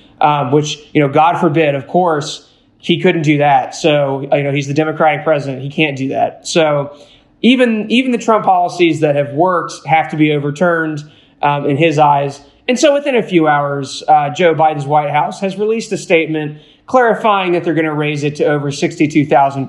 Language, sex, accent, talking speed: English, male, American, 200 wpm